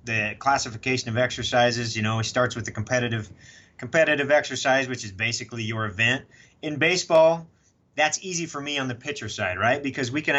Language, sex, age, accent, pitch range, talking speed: English, male, 30-49, American, 110-140 Hz, 185 wpm